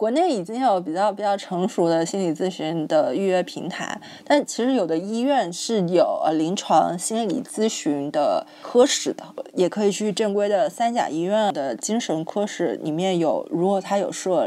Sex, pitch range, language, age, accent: female, 180-240 Hz, Chinese, 20-39, native